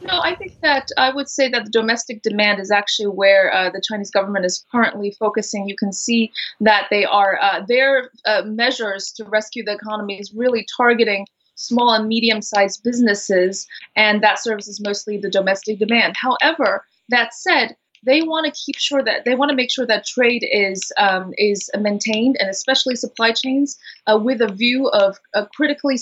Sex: female